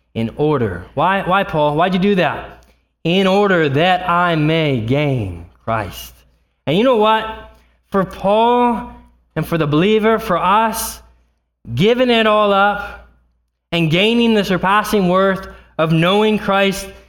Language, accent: English, American